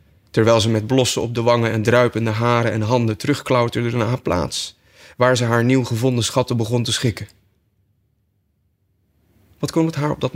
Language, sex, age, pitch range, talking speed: Dutch, male, 30-49, 100-120 Hz, 180 wpm